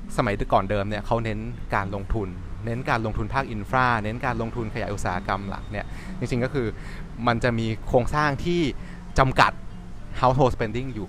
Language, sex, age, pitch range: Thai, male, 20-39, 100-125 Hz